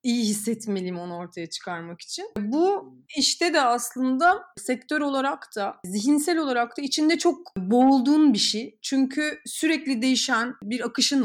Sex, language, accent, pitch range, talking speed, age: female, Turkish, native, 210-275 Hz, 140 wpm, 30-49